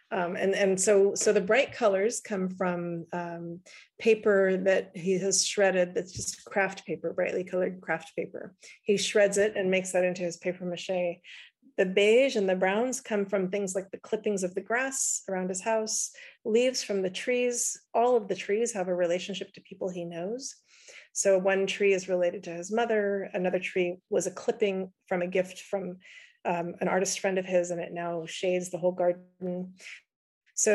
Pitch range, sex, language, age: 180-210 Hz, female, English, 40-59